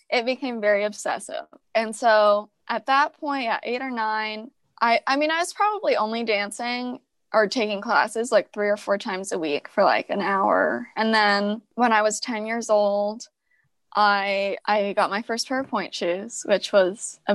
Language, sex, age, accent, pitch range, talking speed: English, female, 10-29, American, 200-235 Hz, 190 wpm